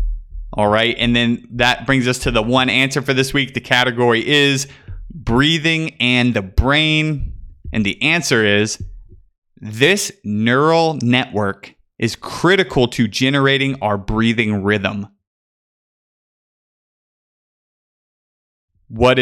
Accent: American